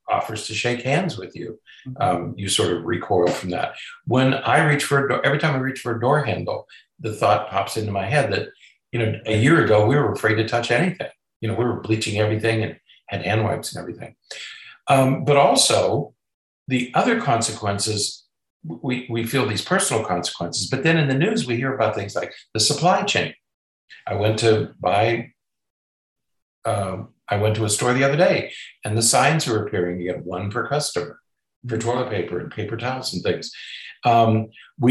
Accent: American